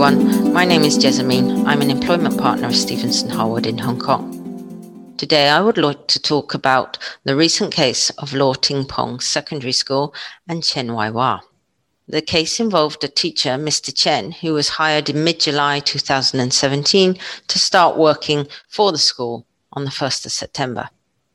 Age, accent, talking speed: 50-69, British, 165 wpm